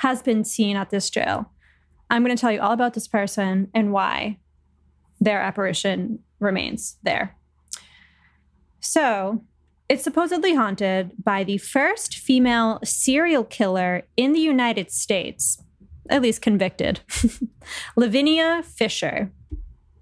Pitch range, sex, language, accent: 195-245 Hz, female, English, American